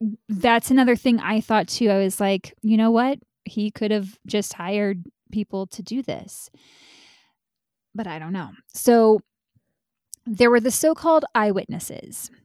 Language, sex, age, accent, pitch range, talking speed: English, female, 20-39, American, 195-240 Hz, 150 wpm